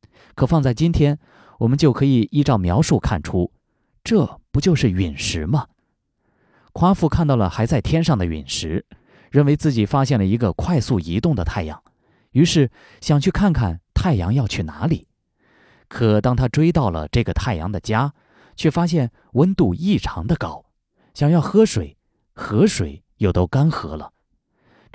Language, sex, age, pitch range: Chinese, male, 20-39, 100-155 Hz